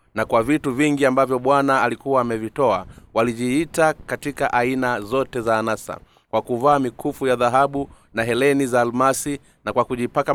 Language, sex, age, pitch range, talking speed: Swahili, male, 30-49, 120-140 Hz, 150 wpm